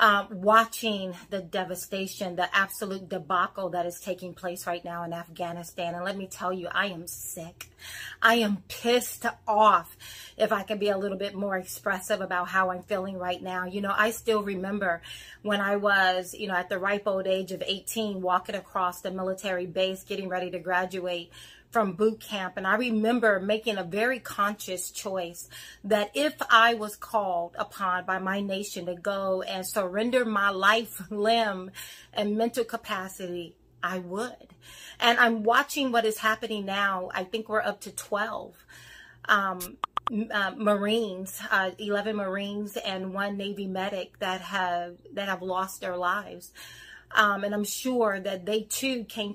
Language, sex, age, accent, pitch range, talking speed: English, female, 30-49, American, 185-215 Hz, 165 wpm